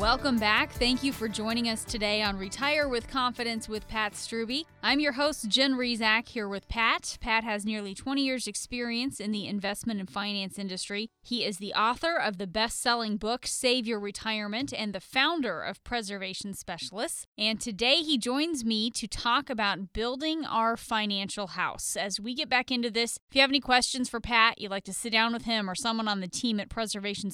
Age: 20-39